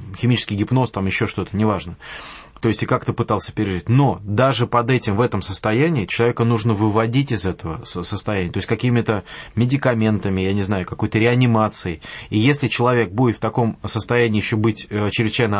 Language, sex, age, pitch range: English, male, 20-39, 105-125 Hz